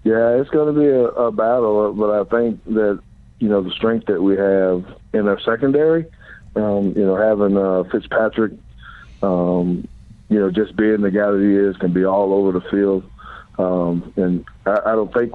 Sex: male